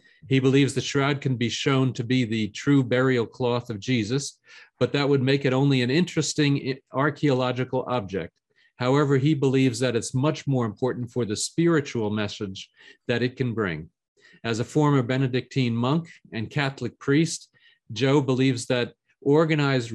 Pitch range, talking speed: 115-135 Hz, 160 wpm